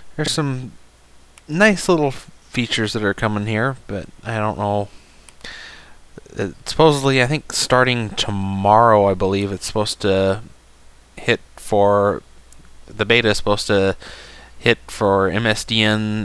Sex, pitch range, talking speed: male, 95-115 Hz, 130 wpm